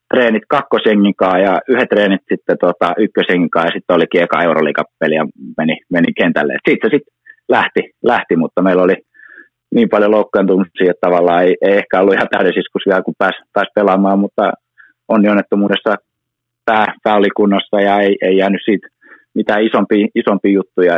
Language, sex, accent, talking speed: Finnish, male, native, 155 wpm